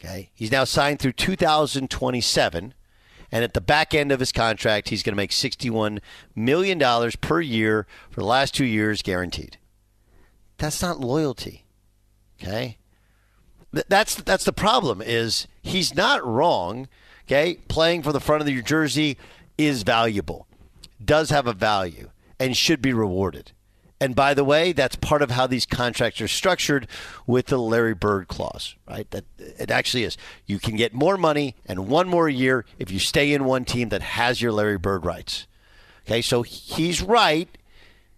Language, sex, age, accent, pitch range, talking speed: English, male, 50-69, American, 100-140 Hz, 165 wpm